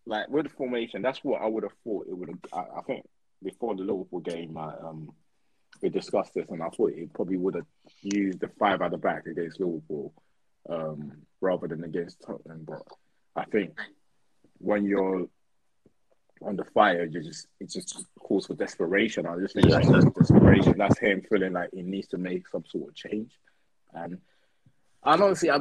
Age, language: 20-39, English